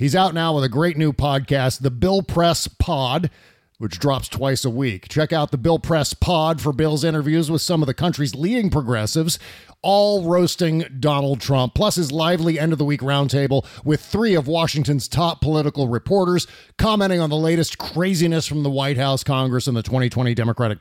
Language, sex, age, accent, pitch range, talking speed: English, male, 40-59, American, 135-175 Hz, 180 wpm